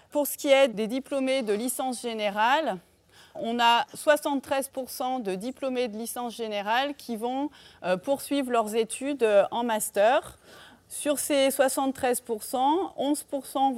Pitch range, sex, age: 215-255 Hz, female, 30-49